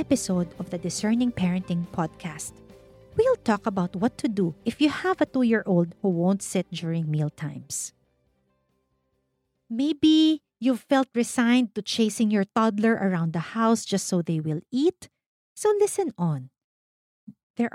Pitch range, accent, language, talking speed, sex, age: 175-260 Hz, Filipino, English, 140 wpm, female, 40-59